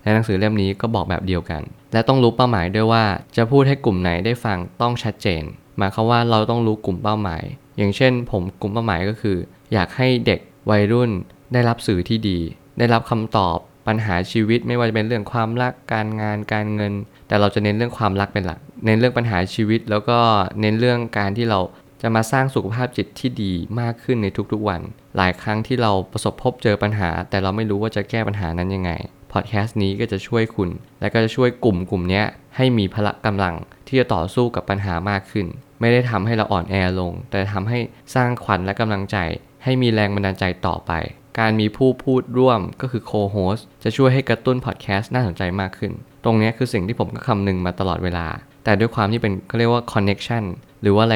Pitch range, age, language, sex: 95-120 Hz, 20-39, Thai, male